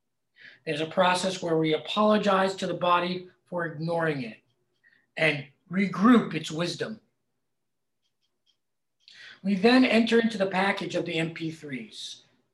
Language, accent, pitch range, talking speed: English, American, 150-205 Hz, 120 wpm